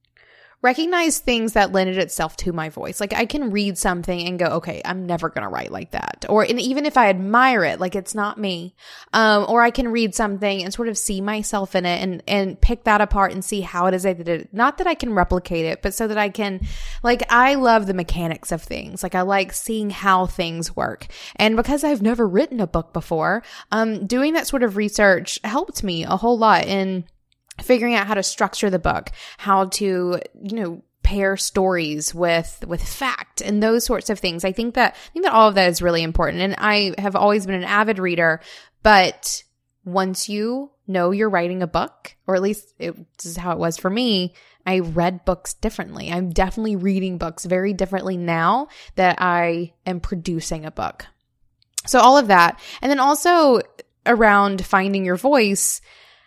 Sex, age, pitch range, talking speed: female, 20-39, 180-225 Hz, 205 wpm